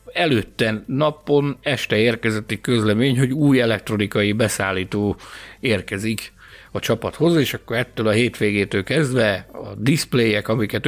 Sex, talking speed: male, 120 wpm